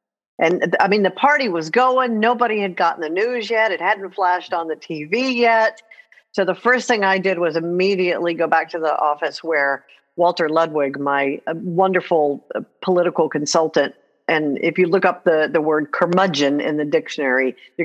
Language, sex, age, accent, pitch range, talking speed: English, female, 50-69, American, 150-210 Hz, 180 wpm